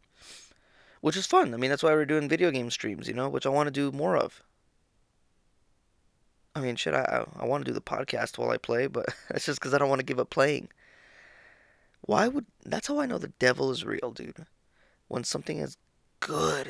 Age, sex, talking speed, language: 20-39, male, 220 wpm, English